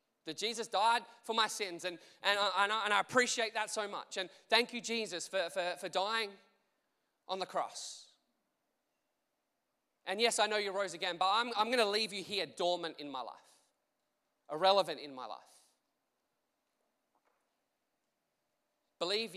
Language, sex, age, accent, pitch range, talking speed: English, male, 20-39, Australian, 175-210 Hz, 145 wpm